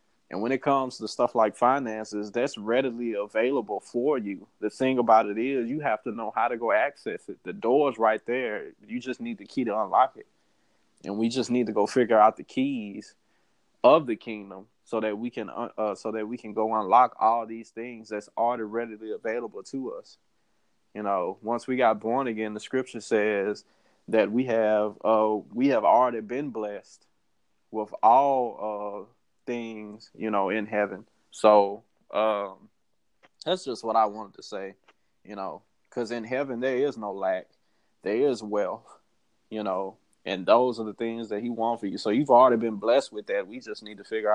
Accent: American